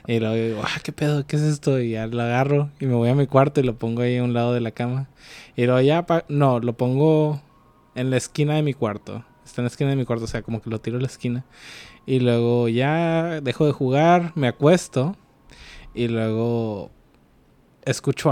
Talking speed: 225 wpm